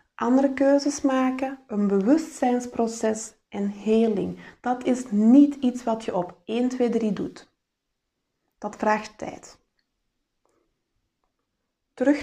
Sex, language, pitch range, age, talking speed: female, Dutch, 220-275 Hz, 20-39, 110 wpm